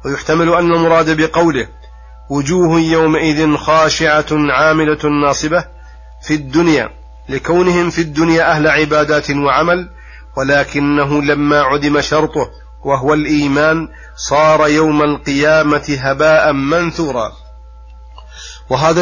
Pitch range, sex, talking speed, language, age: 140-160 Hz, male, 90 wpm, Arabic, 40-59